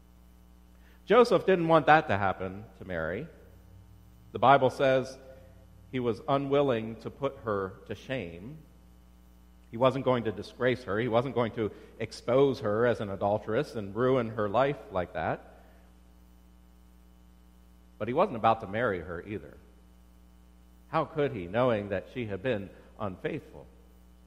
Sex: male